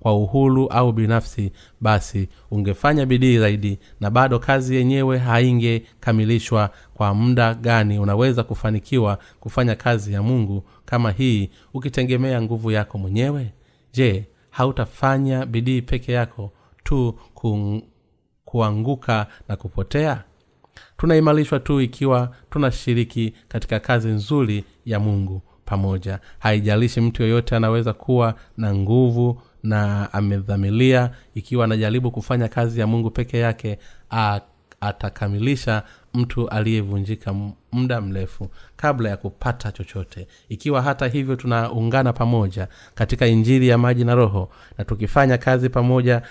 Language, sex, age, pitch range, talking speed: Swahili, male, 30-49, 105-125 Hz, 115 wpm